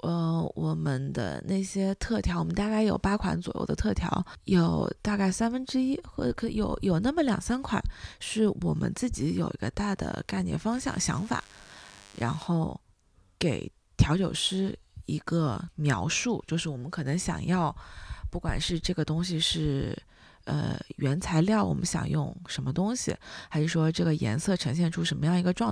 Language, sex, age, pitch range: English, female, 20-39, 150-190 Hz